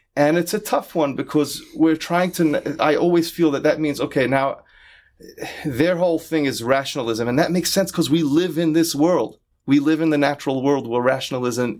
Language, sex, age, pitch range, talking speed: English, male, 30-49, 125-170 Hz, 205 wpm